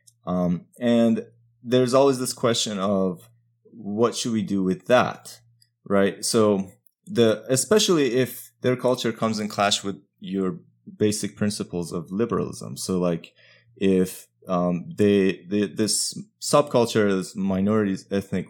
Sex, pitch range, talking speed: male, 90-115 Hz, 130 wpm